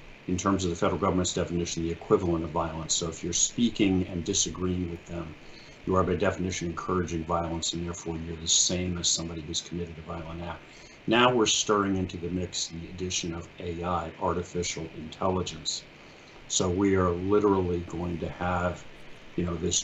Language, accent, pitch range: English, American, 85-95 Hz